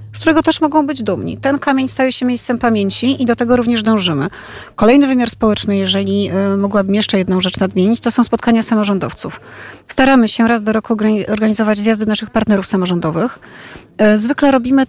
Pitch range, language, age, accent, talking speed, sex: 210-245 Hz, Polish, 30-49, native, 170 wpm, female